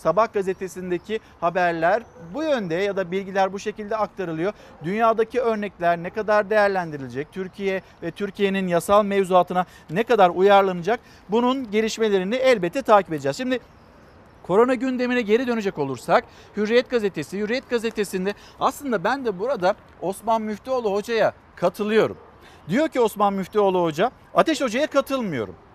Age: 50-69